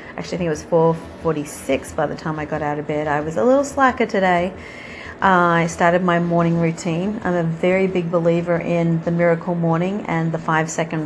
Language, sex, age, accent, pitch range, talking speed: English, female, 40-59, Australian, 170-215 Hz, 205 wpm